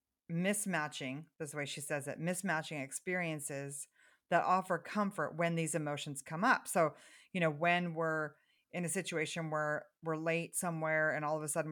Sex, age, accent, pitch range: female, 30-49, American, 155-205 Hz